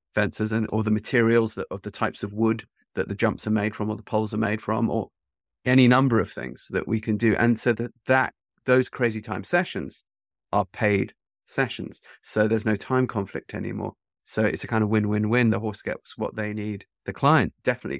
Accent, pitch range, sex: British, 100-125 Hz, male